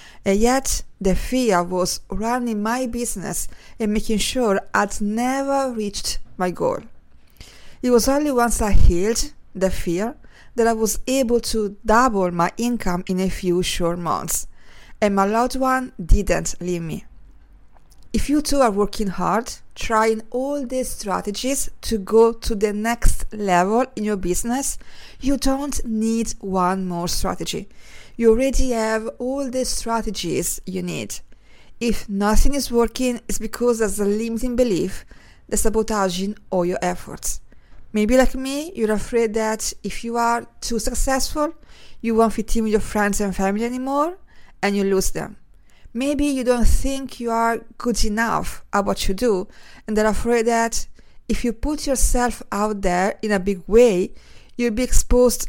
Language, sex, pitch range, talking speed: English, female, 200-245 Hz, 160 wpm